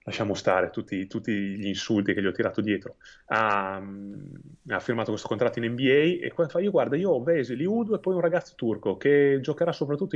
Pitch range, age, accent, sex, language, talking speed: 115-165 Hz, 30-49, native, male, Italian, 205 wpm